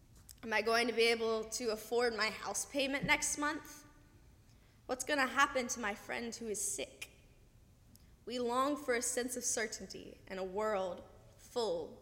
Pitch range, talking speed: 190-250 Hz, 170 wpm